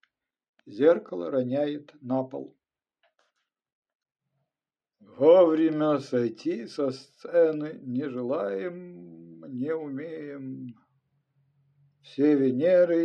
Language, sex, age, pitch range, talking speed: Ukrainian, male, 50-69, 130-155 Hz, 65 wpm